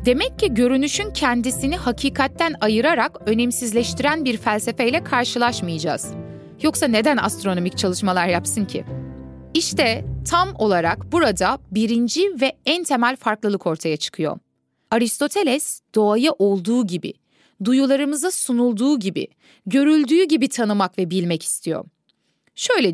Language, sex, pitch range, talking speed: Turkish, female, 205-290 Hz, 105 wpm